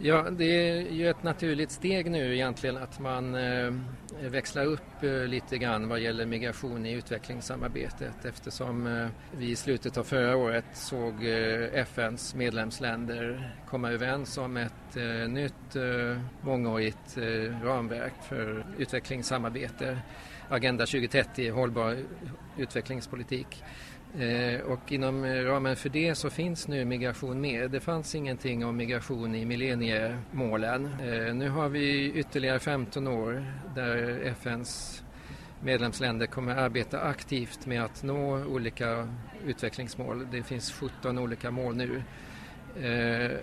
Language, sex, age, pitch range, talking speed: Swedish, male, 40-59, 120-135 Hz, 120 wpm